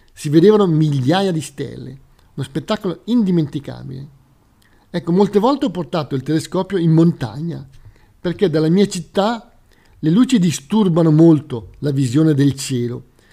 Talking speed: 130 wpm